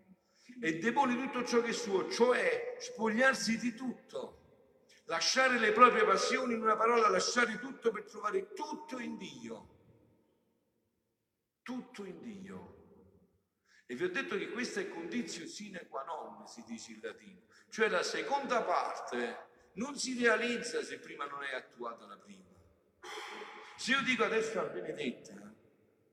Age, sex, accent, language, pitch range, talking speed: 50-69, male, native, Italian, 200-310 Hz, 145 wpm